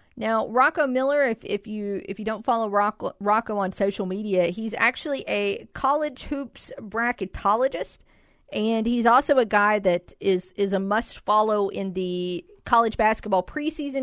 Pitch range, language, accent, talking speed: 185-240 Hz, English, American, 155 wpm